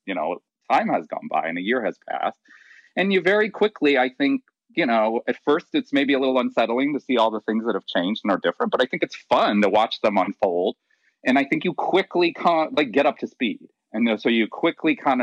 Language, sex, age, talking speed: English, male, 40-59, 250 wpm